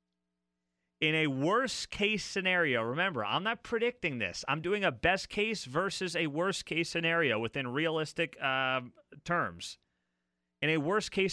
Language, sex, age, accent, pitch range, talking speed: English, male, 30-49, American, 120-175 Hz, 125 wpm